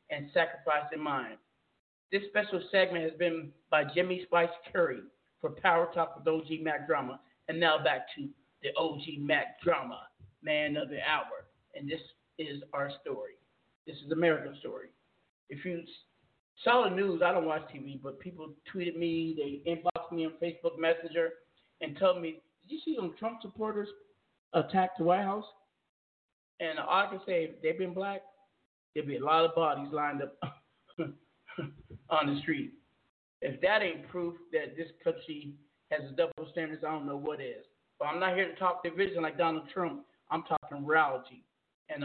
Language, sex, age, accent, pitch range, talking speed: English, male, 50-69, American, 155-185 Hz, 175 wpm